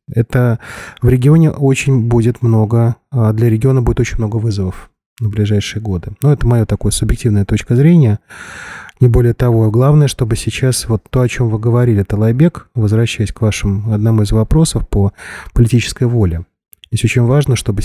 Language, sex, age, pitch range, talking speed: Russian, male, 30-49, 110-125 Hz, 165 wpm